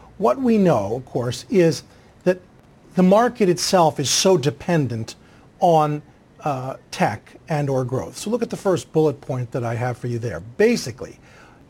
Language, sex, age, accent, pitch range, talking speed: English, male, 50-69, American, 130-190 Hz, 170 wpm